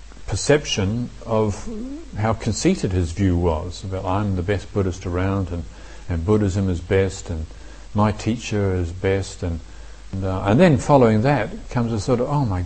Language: English